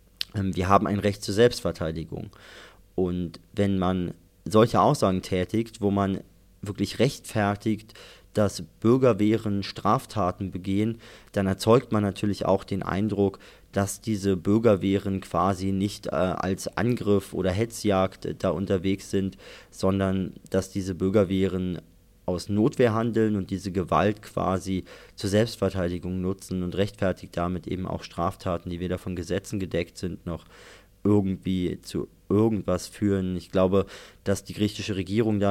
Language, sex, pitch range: German, male, 95-105 Hz